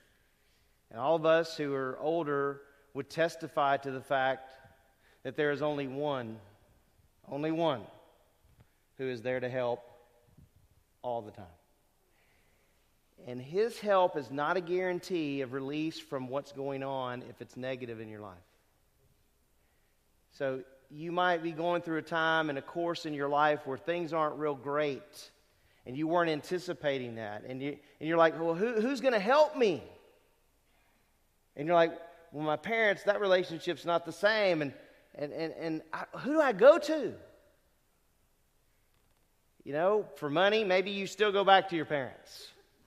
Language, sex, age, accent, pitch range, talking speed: English, male, 40-59, American, 140-190 Hz, 160 wpm